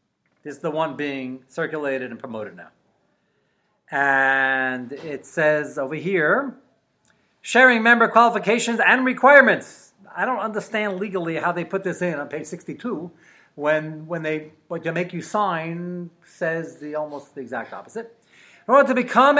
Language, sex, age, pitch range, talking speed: English, male, 40-59, 155-220 Hz, 150 wpm